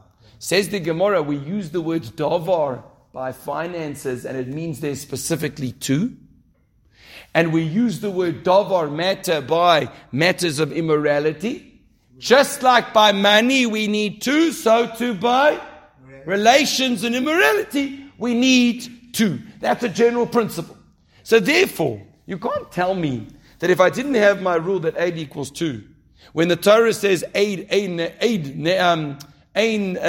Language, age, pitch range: English, 50-69, 140-205 Hz